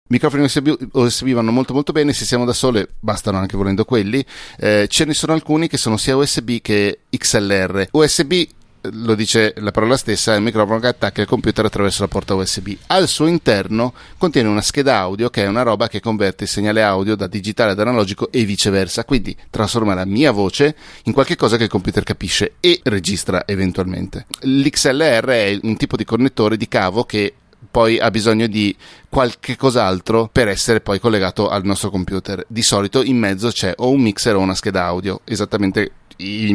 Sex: male